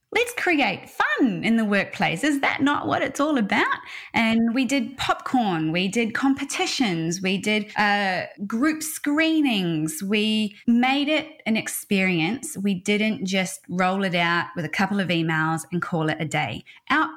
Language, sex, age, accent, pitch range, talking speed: English, female, 20-39, Australian, 175-240 Hz, 165 wpm